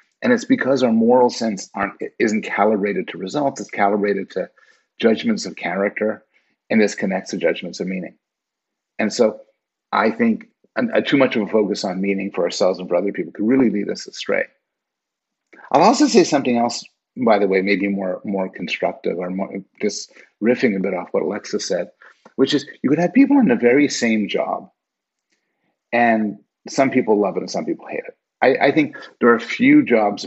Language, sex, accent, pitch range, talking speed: English, male, American, 100-145 Hz, 190 wpm